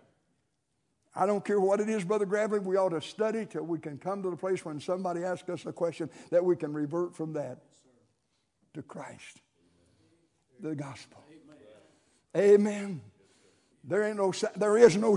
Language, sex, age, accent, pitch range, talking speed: English, male, 60-79, American, 145-220 Hz, 165 wpm